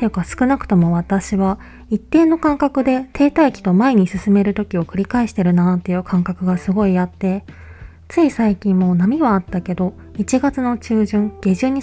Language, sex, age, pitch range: Japanese, female, 20-39, 180-220 Hz